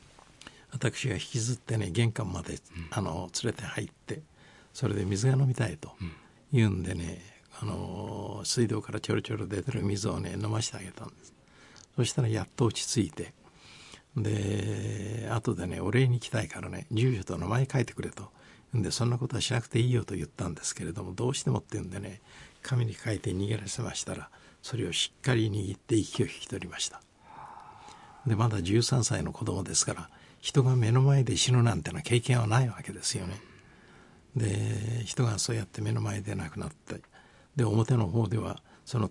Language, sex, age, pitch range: Japanese, male, 60-79, 100-130 Hz